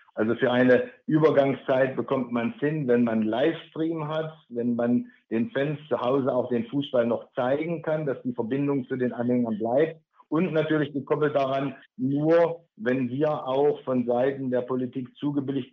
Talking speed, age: 165 wpm, 50-69